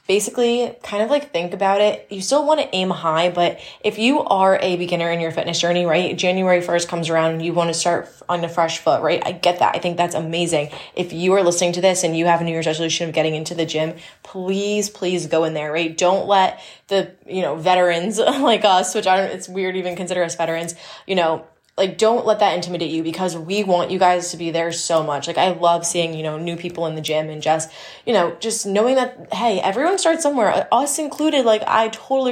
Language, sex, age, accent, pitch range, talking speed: English, female, 20-39, American, 165-190 Hz, 245 wpm